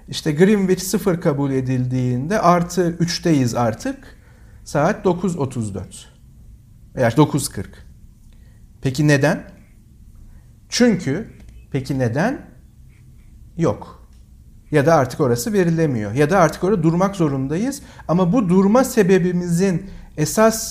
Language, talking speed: Turkish, 100 wpm